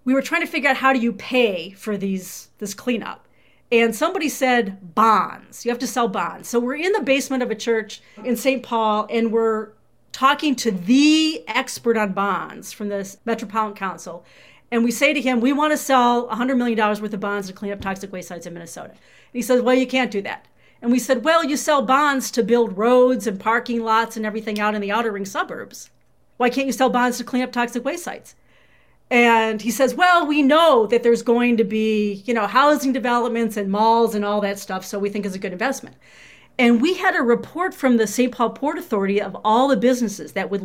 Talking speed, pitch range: 225 wpm, 210-255 Hz